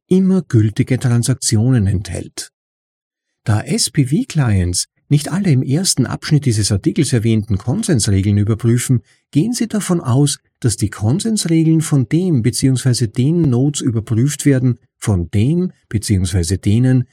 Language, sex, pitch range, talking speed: German, male, 105-150 Hz, 120 wpm